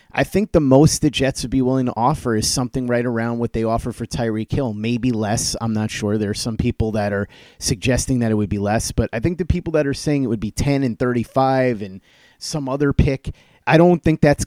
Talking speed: 250 wpm